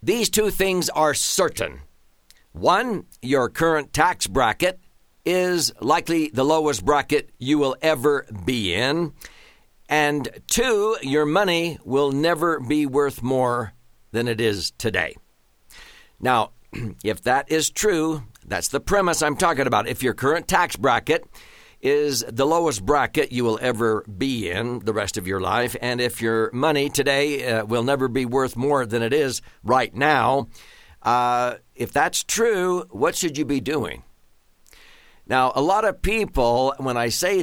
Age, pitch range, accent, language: 60-79, 120-160 Hz, American, English